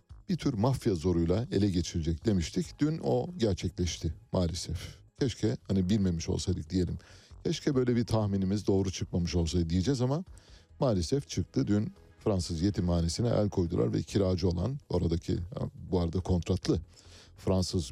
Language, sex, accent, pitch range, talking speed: Turkish, male, native, 90-110 Hz, 135 wpm